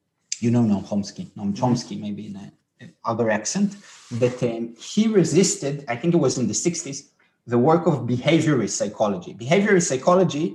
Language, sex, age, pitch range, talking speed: English, male, 30-49, 125-175 Hz, 160 wpm